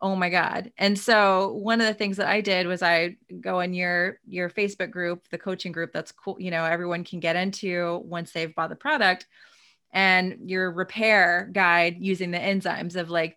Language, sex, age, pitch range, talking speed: English, female, 20-39, 175-205 Hz, 200 wpm